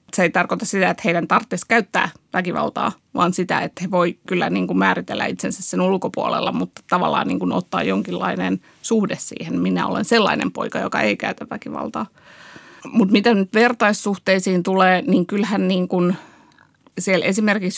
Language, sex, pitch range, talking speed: Finnish, female, 175-210 Hz, 140 wpm